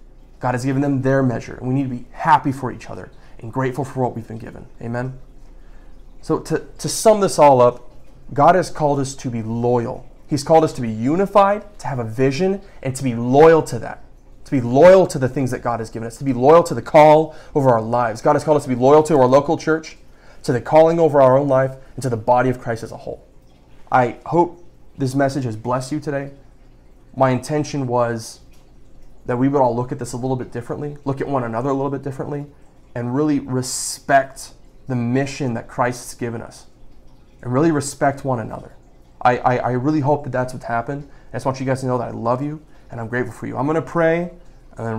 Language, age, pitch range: English, 20-39, 125-145 Hz